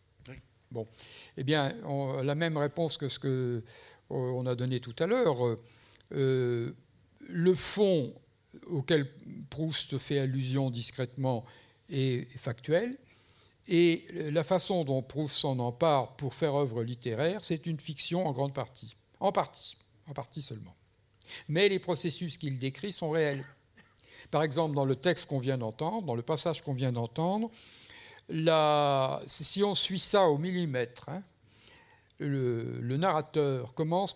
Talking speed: 140 wpm